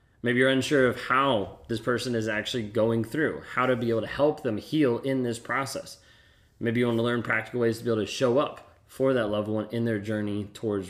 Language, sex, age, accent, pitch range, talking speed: English, male, 30-49, American, 110-135 Hz, 235 wpm